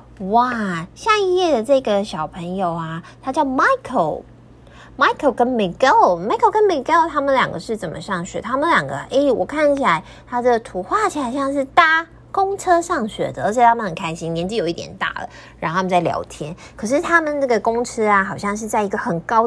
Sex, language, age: female, Chinese, 20-39